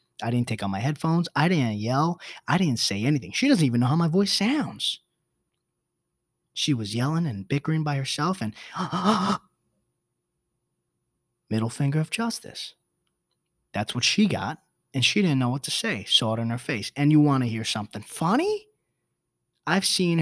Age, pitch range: 20-39, 110-150 Hz